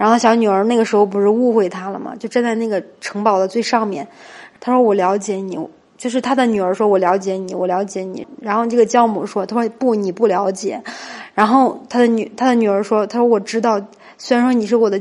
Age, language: 20-39, Chinese